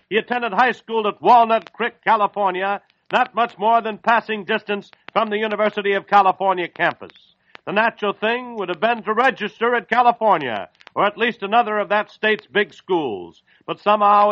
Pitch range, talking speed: 195-225 Hz, 170 wpm